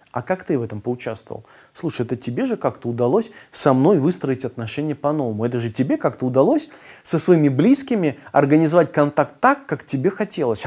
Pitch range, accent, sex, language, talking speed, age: 125-180 Hz, native, male, Russian, 175 wpm, 20-39